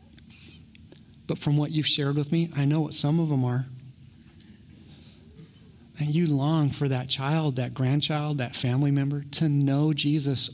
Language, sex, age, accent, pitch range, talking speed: English, male, 40-59, American, 120-145 Hz, 160 wpm